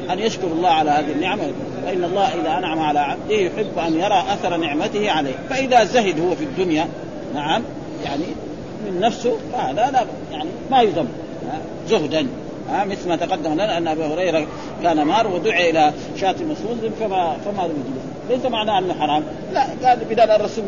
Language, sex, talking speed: Arabic, male, 185 wpm